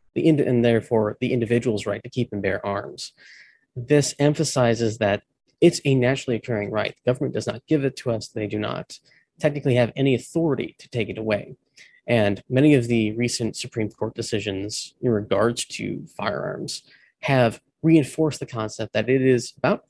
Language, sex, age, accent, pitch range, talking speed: English, male, 20-39, American, 110-135 Hz, 180 wpm